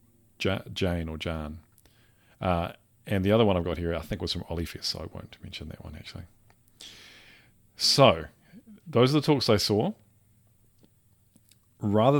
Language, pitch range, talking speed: English, 90-115 Hz, 150 wpm